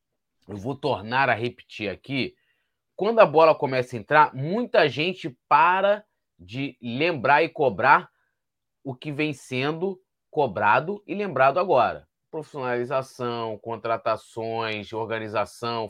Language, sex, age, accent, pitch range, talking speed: Portuguese, male, 20-39, Brazilian, 125-180 Hz, 115 wpm